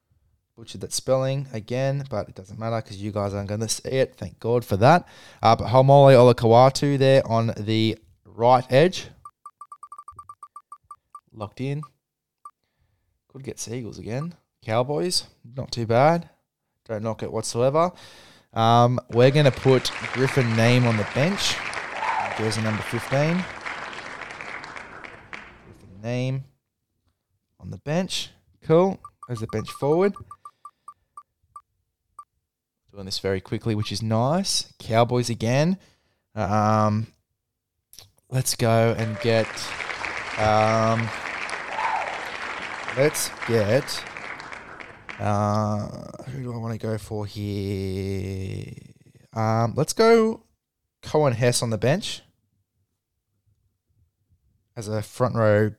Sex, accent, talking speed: male, Australian, 115 wpm